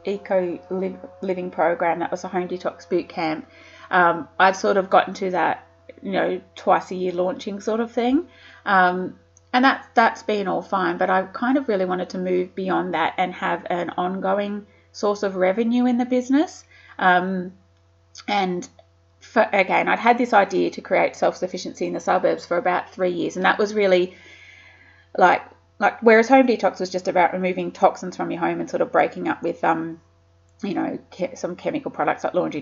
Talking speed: 190 wpm